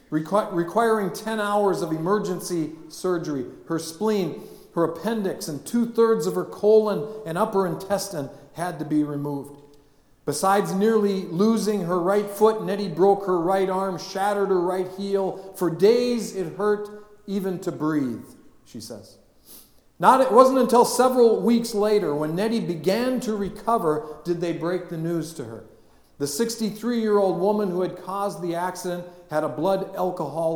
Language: English